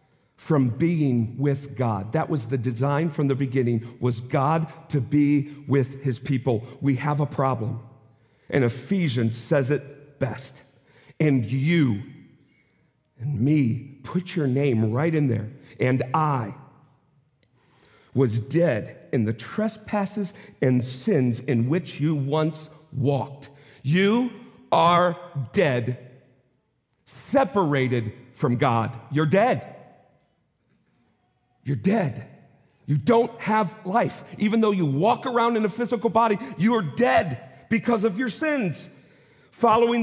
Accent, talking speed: American, 125 wpm